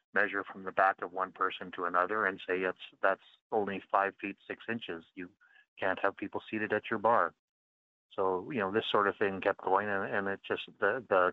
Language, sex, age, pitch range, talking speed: English, male, 30-49, 90-100 Hz, 215 wpm